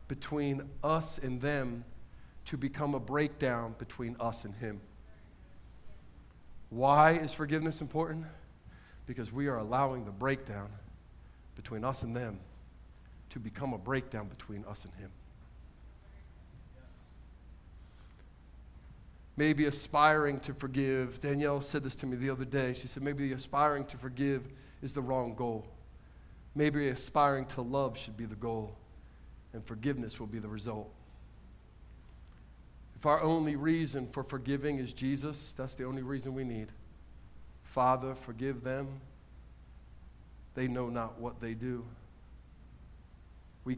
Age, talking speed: 40-59, 130 wpm